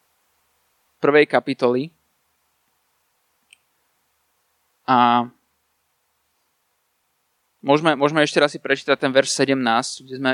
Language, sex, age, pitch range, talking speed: Slovak, male, 20-39, 125-150 Hz, 75 wpm